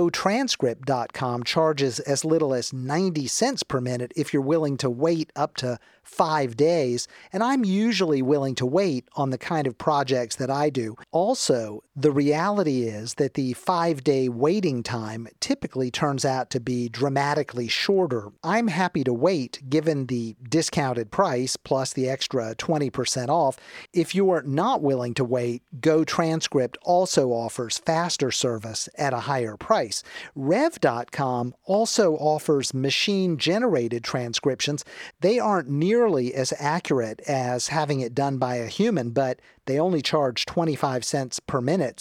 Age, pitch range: 40-59, 125-160 Hz